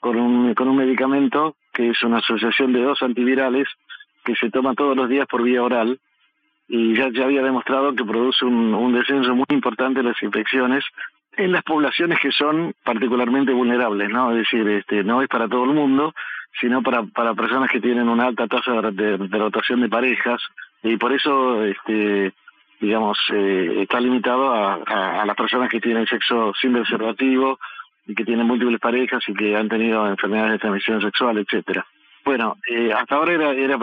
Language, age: Spanish, 50-69